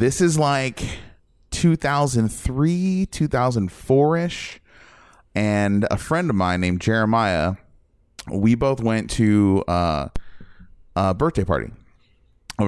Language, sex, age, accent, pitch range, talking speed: English, male, 20-39, American, 95-125 Hz, 100 wpm